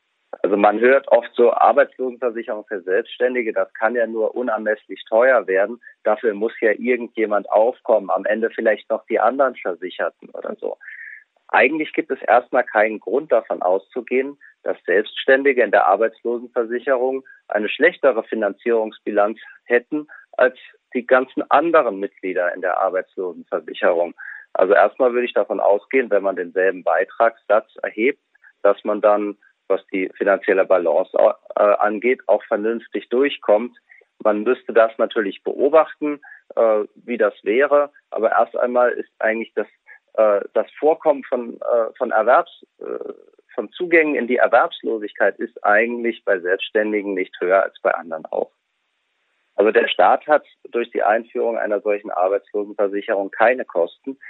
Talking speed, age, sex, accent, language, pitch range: 140 wpm, 40-59, male, German, German, 105-155 Hz